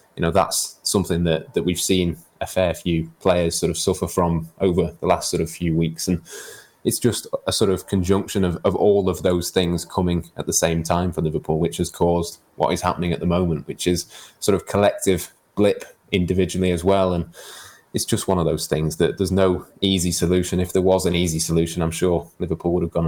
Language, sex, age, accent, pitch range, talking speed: English, male, 20-39, British, 80-90 Hz, 220 wpm